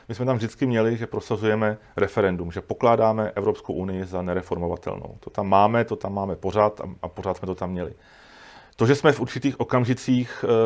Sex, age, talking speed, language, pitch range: male, 40-59, 185 wpm, Czech, 95-105 Hz